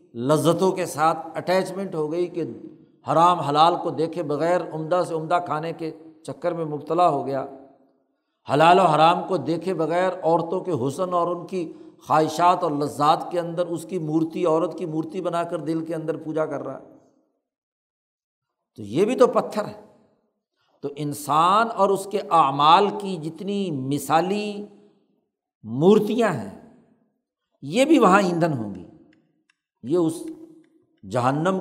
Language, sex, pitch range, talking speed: Urdu, male, 160-215 Hz, 150 wpm